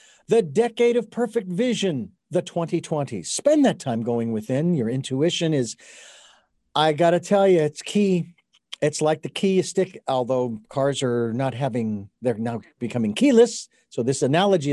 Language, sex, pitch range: English, male, 140-195 Hz